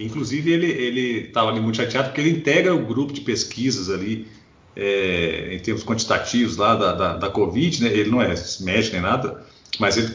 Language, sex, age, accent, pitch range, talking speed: Portuguese, male, 40-59, Brazilian, 110-165 Hz, 195 wpm